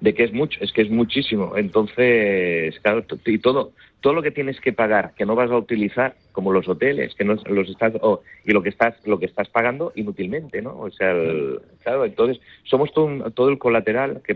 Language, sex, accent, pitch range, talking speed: Spanish, male, Spanish, 95-115 Hz, 225 wpm